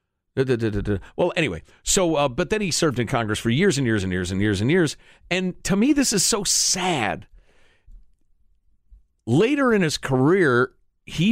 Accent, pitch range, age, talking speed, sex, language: American, 120-190 Hz, 50-69, 175 wpm, male, English